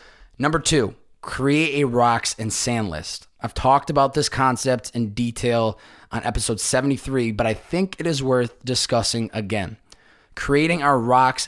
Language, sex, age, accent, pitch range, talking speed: English, male, 20-39, American, 115-150 Hz, 150 wpm